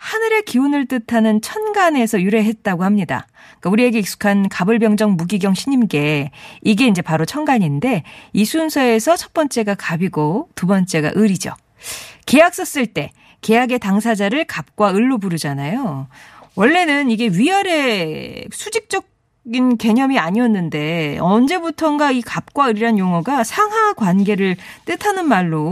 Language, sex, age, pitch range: Korean, female, 40-59, 180-265 Hz